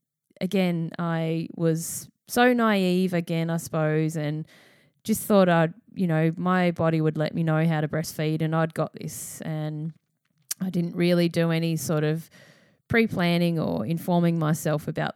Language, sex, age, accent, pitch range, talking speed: English, female, 10-29, Australian, 155-190 Hz, 160 wpm